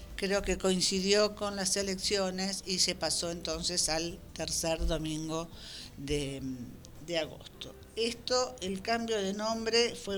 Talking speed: 130 wpm